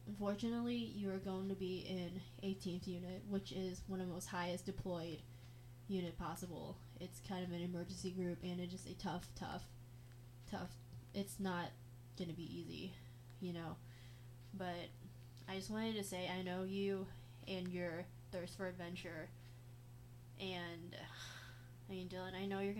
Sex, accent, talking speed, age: female, American, 160 wpm, 20-39